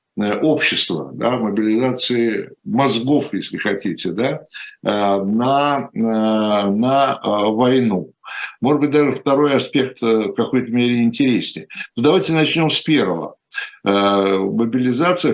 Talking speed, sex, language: 100 wpm, male, Russian